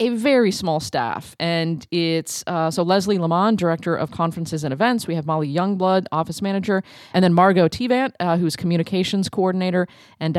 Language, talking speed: English, 175 wpm